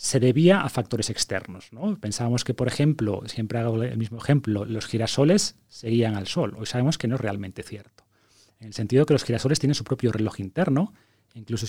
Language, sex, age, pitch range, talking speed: Spanish, male, 30-49, 110-150 Hz, 200 wpm